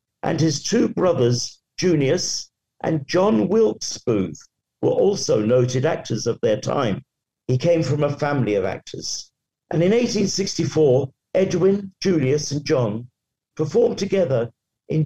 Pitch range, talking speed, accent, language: 125-165 Hz, 130 wpm, British, English